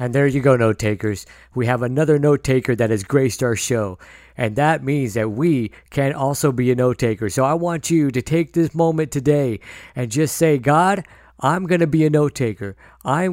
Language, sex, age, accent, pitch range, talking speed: English, male, 50-69, American, 125-160 Hz, 215 wpm